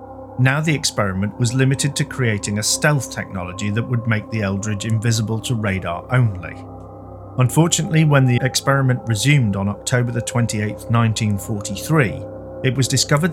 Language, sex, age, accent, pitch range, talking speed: English, male, 40-59, British, 105-140 Hz, 140 wpm